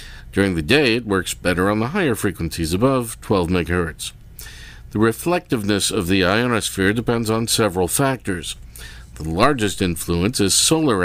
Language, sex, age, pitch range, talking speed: English, male, 50-69, 90-115 Hz, 145 wpm